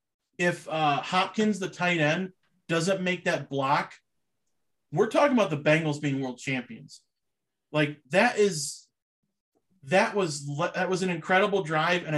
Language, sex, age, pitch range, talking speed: English, male, 30-49, 145-175 Hz, 145 wpm